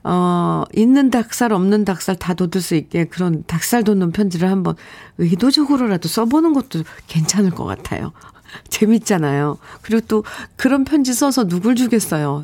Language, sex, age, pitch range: Korean, female, 50-69, 165-225 Hz